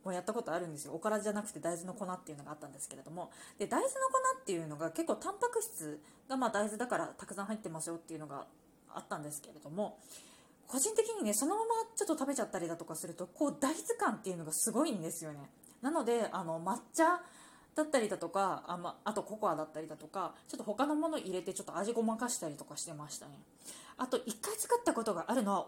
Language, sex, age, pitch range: Japanese, female, 20-39, 180-285 Hz